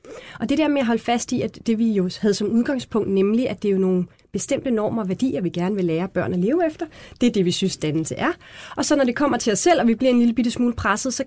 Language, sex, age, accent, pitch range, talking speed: Danish, female, 30-49, native, 195-255 Hz, 305 wpm